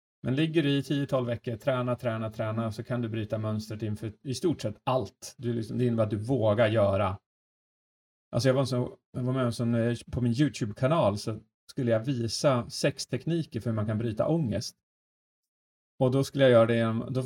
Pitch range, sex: 100-125 Hz, male